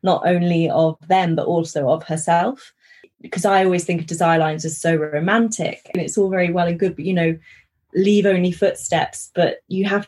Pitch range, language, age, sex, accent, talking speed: 160-190 Hz, English, 20-39, female, British, 200 wpm